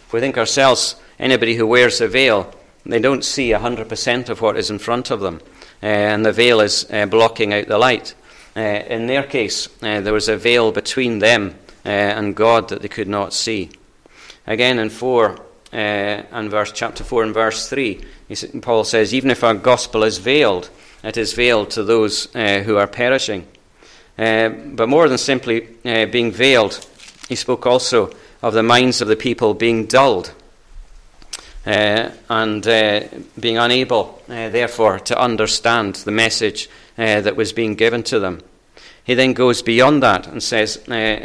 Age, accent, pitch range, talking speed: 40-59, British, 105-120 Hz, 175 wpm